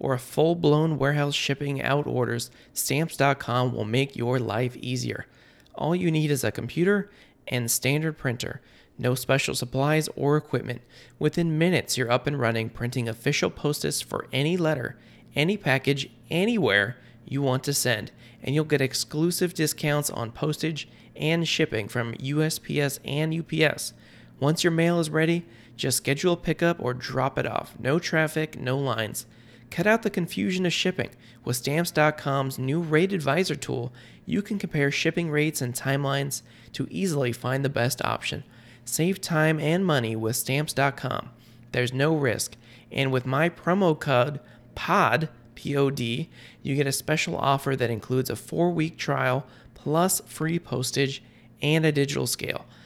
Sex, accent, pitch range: male, American, 125-155 Hz